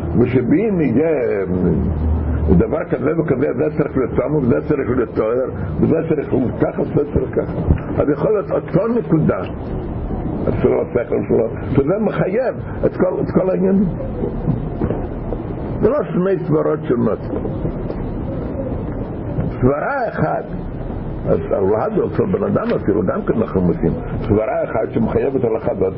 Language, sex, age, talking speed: Hebrew, male, 50-69, 130 wpm